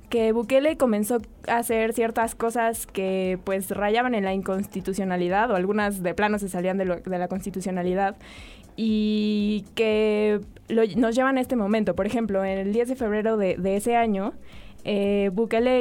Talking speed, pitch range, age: 160 wpm, 195-230 Hz, 20-39